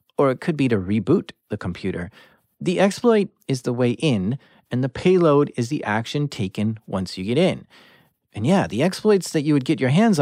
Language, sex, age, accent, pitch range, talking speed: English, male, 40-59, American, 120-170 Hz, 205 wpm